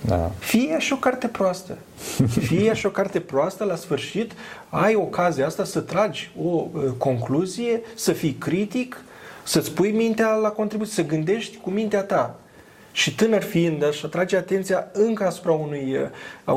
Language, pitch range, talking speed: Romanian, 145-195 Hz, 160 wpm